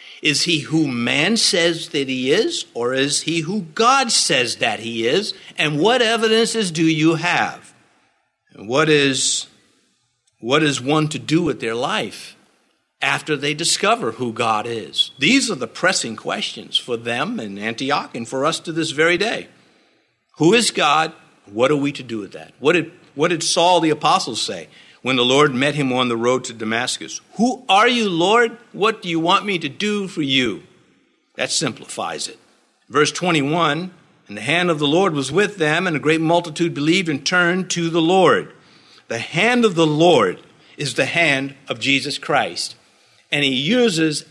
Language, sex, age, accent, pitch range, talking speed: English, male, 50-69, American, 140-180 Hz, 185 wpm